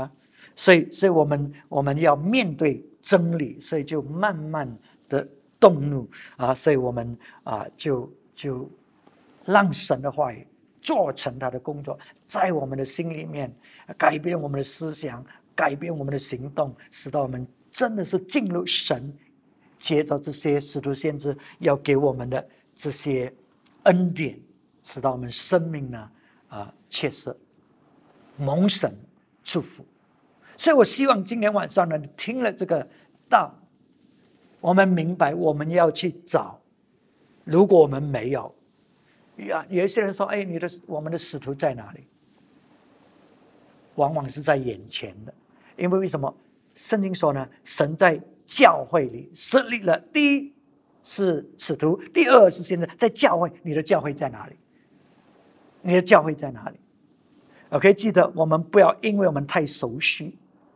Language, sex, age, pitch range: English, male, 60-79, 140-185 Hz